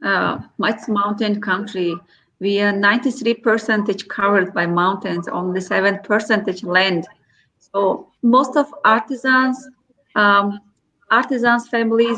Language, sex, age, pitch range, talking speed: English, female, 30-49, 205-240 Hz, 105 wpm